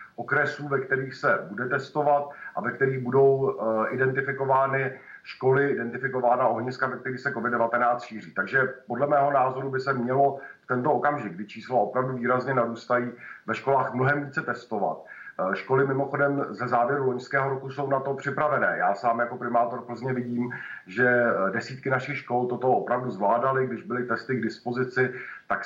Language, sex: Czech, male